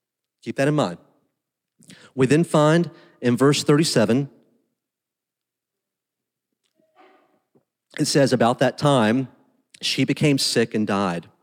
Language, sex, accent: English, male, American